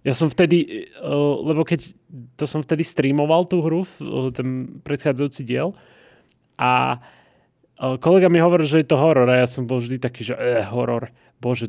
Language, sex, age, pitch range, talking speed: Slovak, male, 20-39, 125-160 Hz, 165 wpm